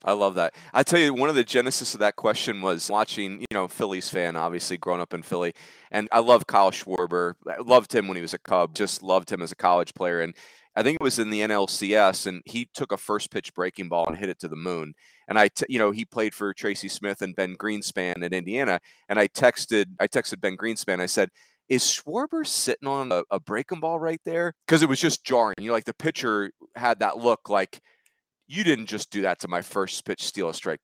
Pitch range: 95-130 Hz